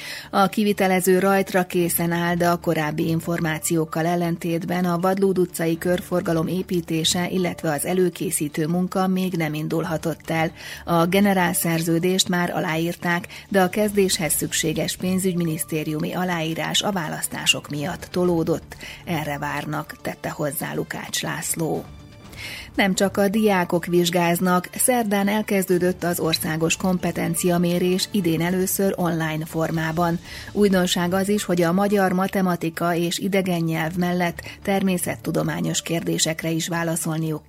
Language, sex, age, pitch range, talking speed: Hungarian, female, 30-49, 165-185 Hz, 115 wpm